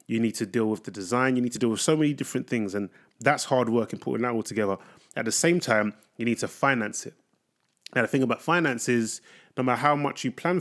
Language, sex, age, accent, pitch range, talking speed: English, male, 20-39, British, 115-140 Hz, 260 wpm